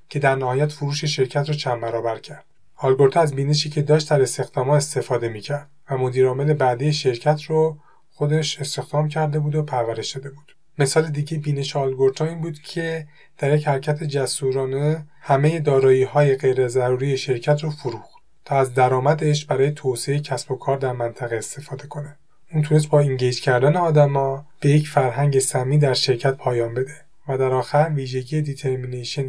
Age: 30-49